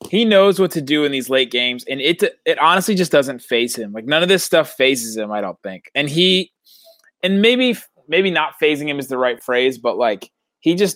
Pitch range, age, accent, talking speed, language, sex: 125-165 Hz, 20-39, American, 235 wpm, English, male